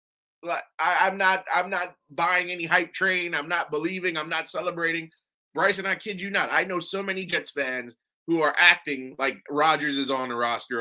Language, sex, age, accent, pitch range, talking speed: English, male, 20-39, American, 145-195 Hz, 200 wpm